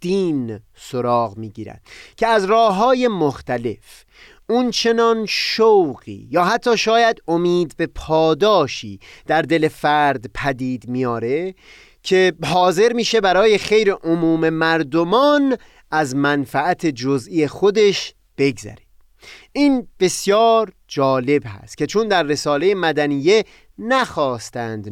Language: Persian